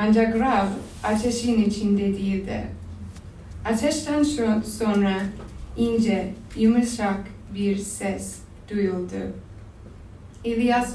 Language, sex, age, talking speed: Turkish, female, 20-39, 75 wpm